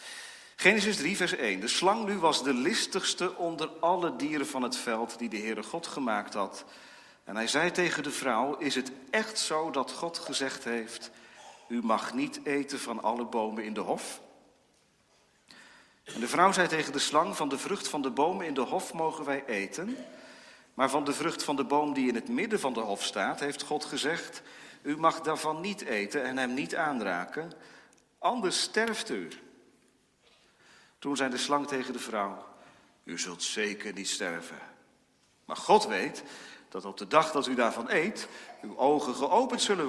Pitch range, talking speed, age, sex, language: 120-170 Hz, 185 wpm, 40-59, male, Dutch